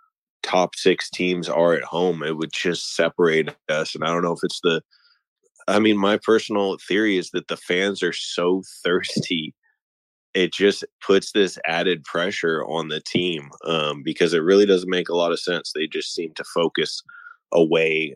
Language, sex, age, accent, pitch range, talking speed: English, male, 20-39, American, 85-120 Hz, 180 wpm